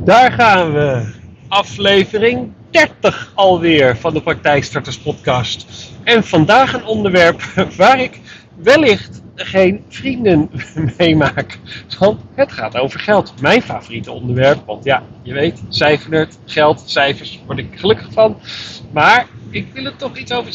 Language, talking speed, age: Dutch, 135 wpm, 40-59